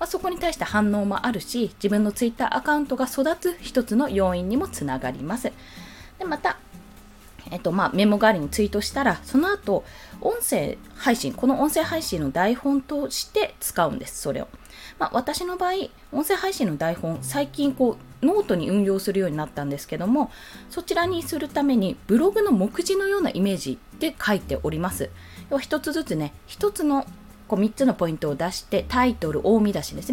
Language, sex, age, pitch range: Japanese, female, 20-39, 190-295 Hz